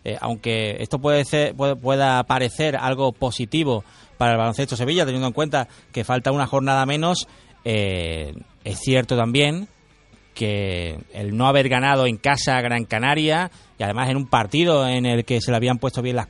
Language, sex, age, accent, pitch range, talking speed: Spanish, male, 30-49, Spanish, 115-135 Hz, 180 wpm